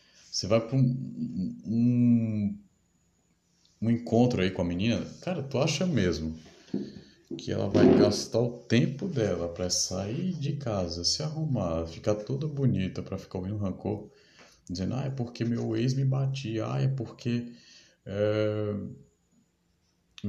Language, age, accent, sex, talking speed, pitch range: Portuguese, 20-39, Brazilian, male, 140 wpm, 90-130 Hz